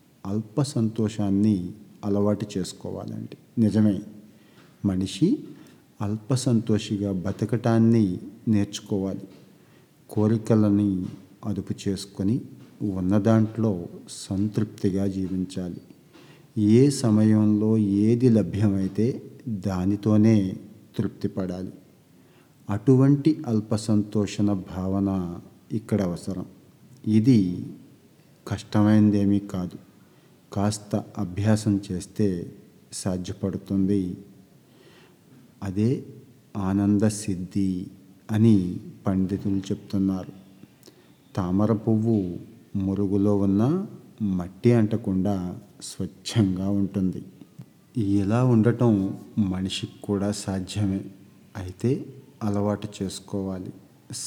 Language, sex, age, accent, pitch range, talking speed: Telugu, male, 50-69, native, 95-110 Hz, 60 wpm